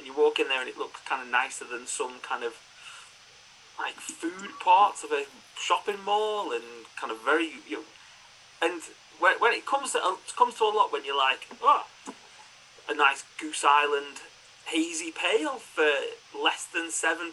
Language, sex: English, male